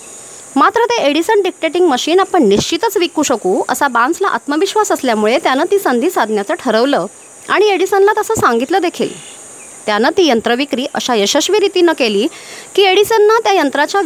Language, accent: Marathi, native